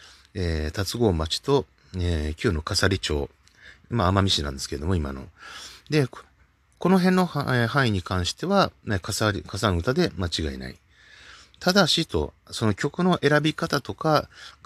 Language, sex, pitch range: Japanese, male, 80-115 Hz